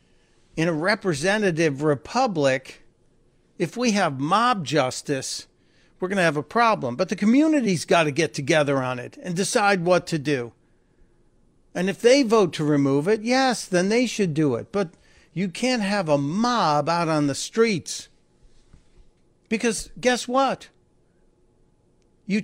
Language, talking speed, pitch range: English, 150 wpm, 140-195 Hz